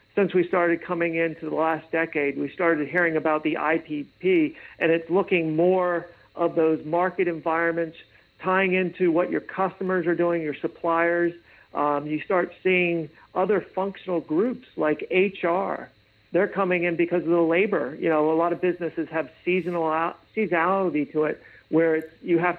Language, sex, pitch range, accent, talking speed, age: English, male, 155-180 Hz, American, 165 wpm, 50-69